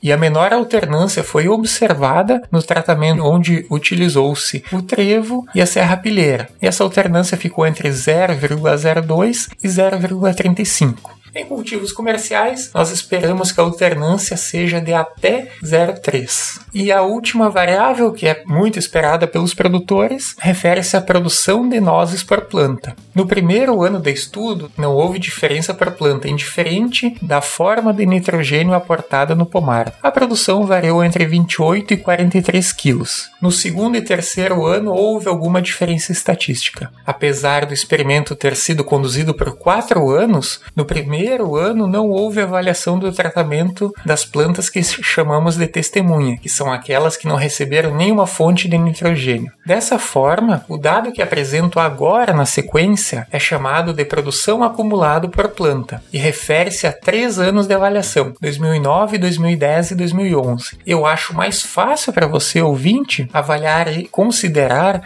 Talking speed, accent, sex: 145 wpm, Brazilian, male